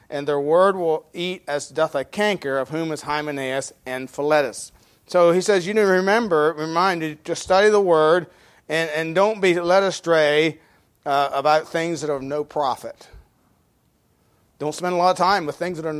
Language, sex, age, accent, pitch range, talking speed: English, male, 40-59, American, 150-185 Hz, 195 wpm